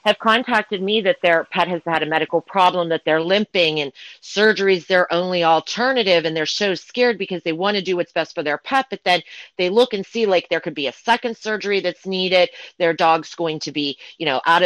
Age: 40-59